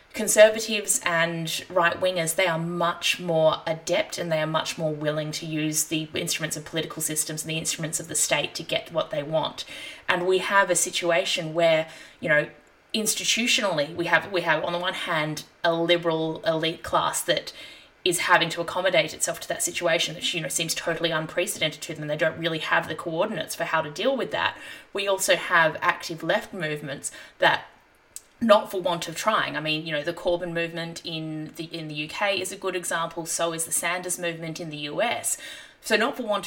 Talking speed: 200 wpm